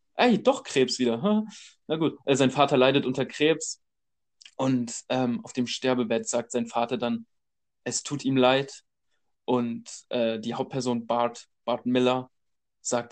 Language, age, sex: German, 20-39, male